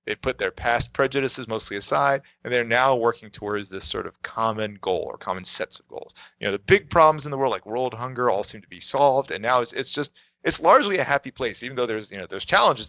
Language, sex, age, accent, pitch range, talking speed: English, male, 30-49, American, 105-140 Hz, 255 wpm